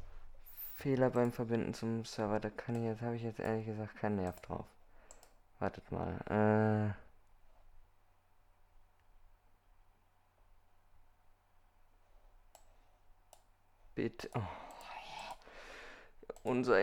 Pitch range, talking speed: 90-110 Hz, 80 wpm